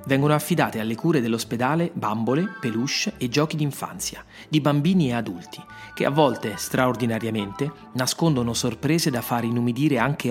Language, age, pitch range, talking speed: Italian, 30-49, 125-165 Hz, 140 wpm